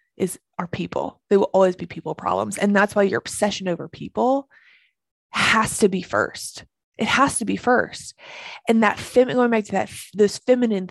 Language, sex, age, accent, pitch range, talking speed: English, female, 20-39, American, 185-230 Hz, 185 wpm